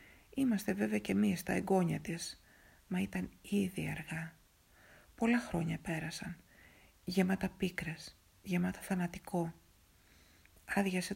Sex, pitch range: female, 160-205 Hz